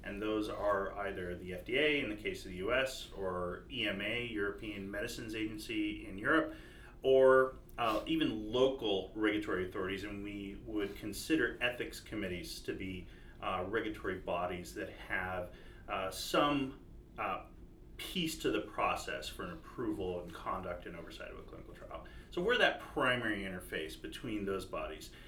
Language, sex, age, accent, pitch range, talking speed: English, male, 30-49, American, 100-120 Hz, 150 wpm